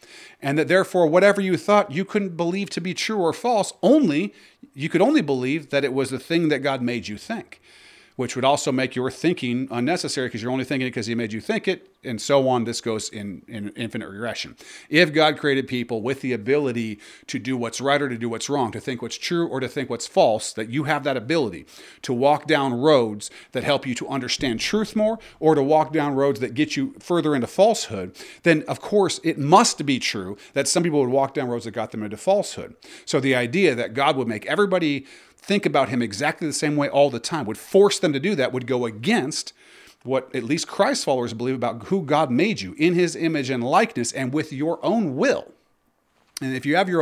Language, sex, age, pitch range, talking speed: English, male, 40-59, 125-175 Hz, 230 wpm